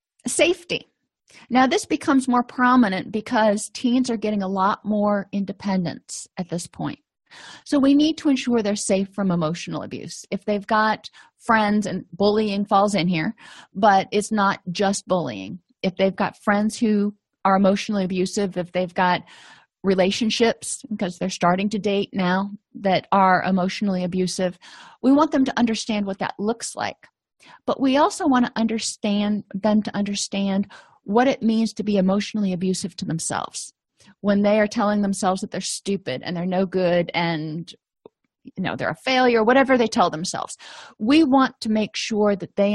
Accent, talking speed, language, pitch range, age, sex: American, 165 wpm, English, 185-220 Hz, 40-59, female